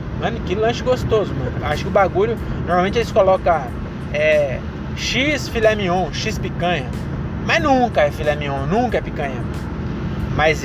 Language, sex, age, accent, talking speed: Portuguese, male, 20-39, Brazilian, 145 wpm